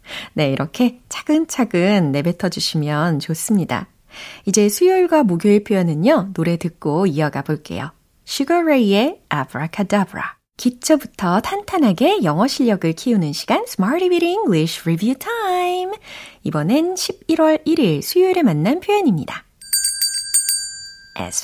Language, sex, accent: Korean, female, native